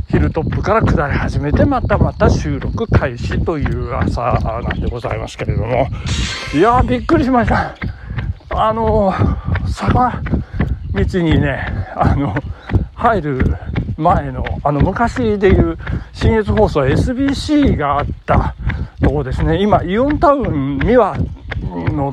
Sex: male